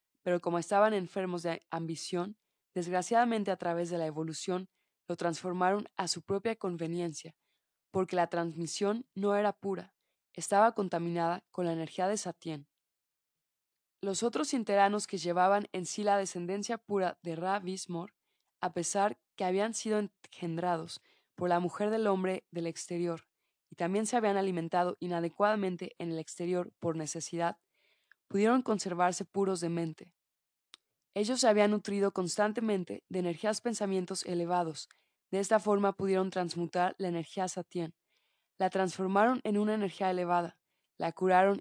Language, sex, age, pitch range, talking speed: Spanish, female, 20-39, 170-200 Hz, 140 wpm